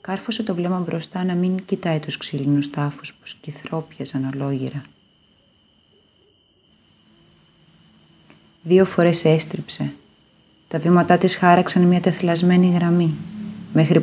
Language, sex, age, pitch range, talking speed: Greek, female, 30-49, 155-190 Hz, 105 wpm